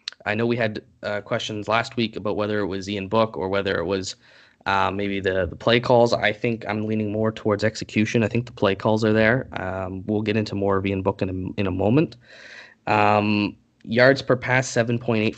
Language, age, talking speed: English, 20-39, 220 wpm